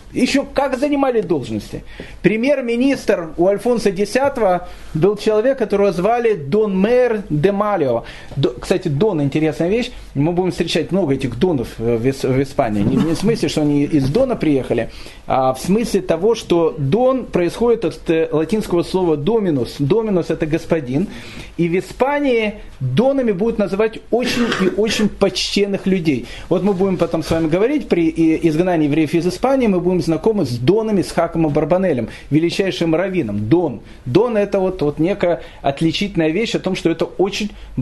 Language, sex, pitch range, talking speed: Russian, male, 160-225 Hz, 155 wpm